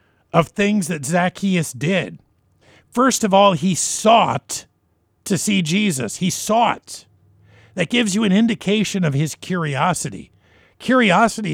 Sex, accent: male, American